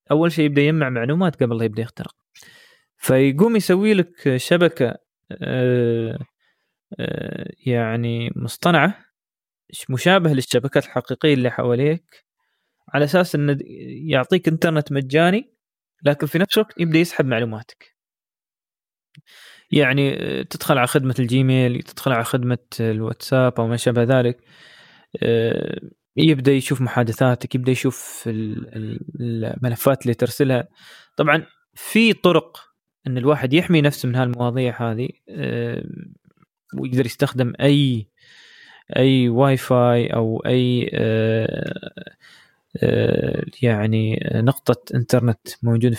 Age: 20-39